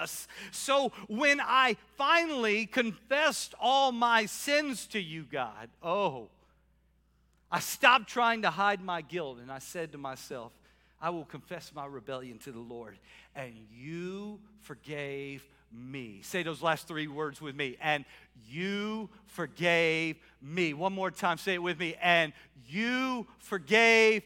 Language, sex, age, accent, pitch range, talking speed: English, male, 50-69, American, 160-235 Hz, 140 wpm